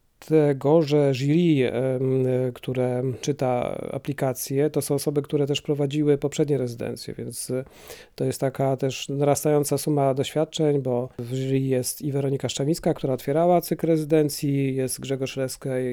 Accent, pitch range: native, 135-150 Hz